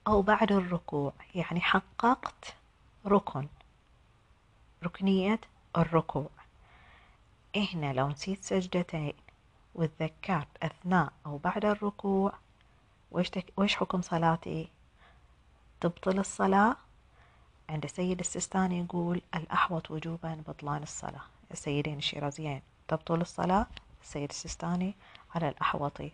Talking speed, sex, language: 85 wpm, female, Arabic